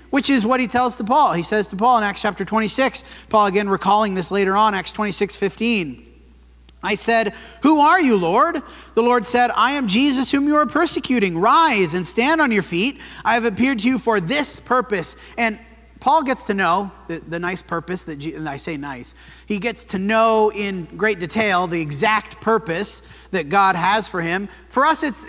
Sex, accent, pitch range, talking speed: male, American, 185-240 Hz, 205 wpm